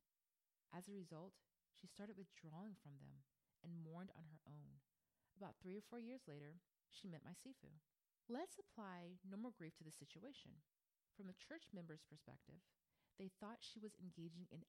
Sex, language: female, English